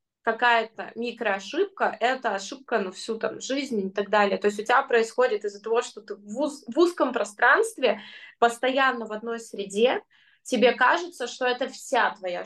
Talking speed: 175 wpm